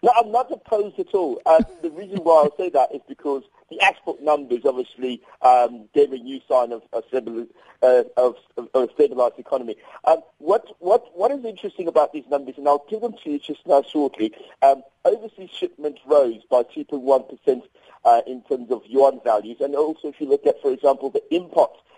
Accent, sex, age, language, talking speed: British, male, 40-59, English, 185 wpm